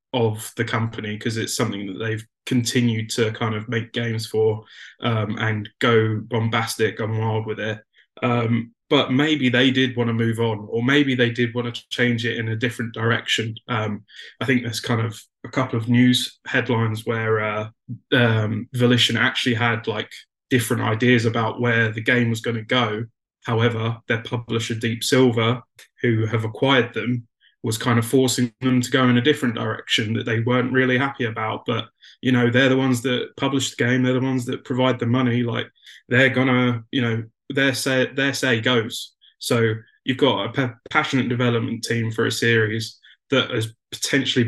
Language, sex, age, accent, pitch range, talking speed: English, male, 20-39, British, 115-125 Hz, 190 wpm